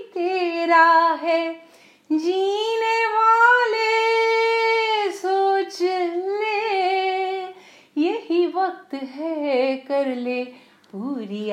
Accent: Indian